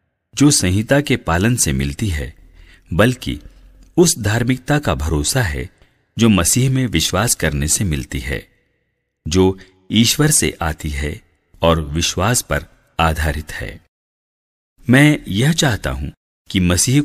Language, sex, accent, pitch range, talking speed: English, male, Indian, 80-115 Hz, 130 wpm